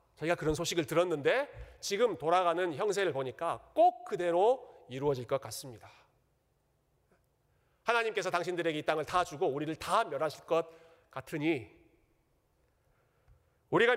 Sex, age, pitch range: male, 40-59, 130-195 Hz